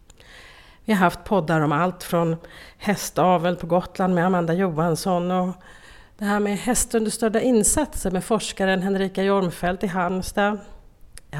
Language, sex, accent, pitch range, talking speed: Swedish, female, native, 160-215 Hz, 135 wpm